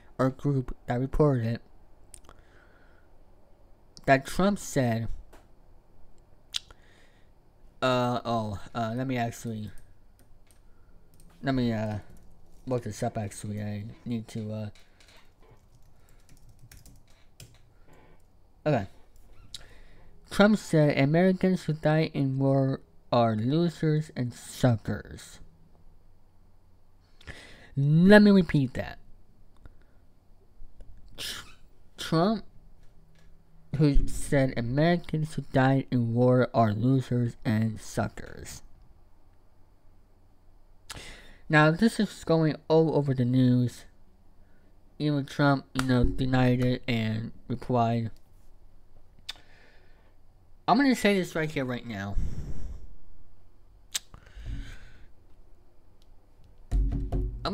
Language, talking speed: English, 80 wpm